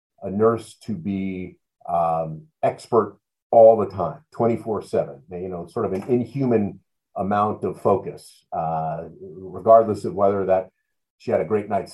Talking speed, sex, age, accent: 150 wpm, male, 50-69, American